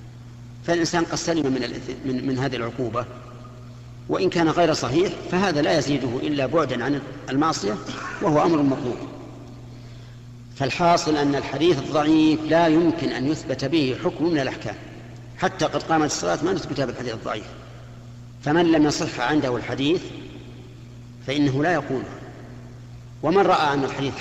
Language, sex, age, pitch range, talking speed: Arabic, male, 50-69, 120-150 Hz, 130 wpm